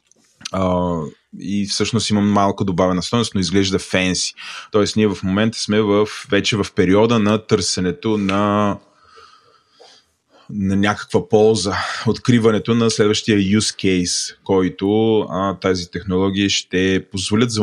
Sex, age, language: male, 20-39, Bulgarian